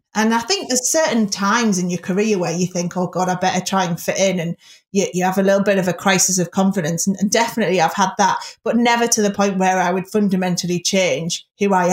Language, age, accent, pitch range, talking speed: English, 30-49, British, 180-220 Hz, 250 wpm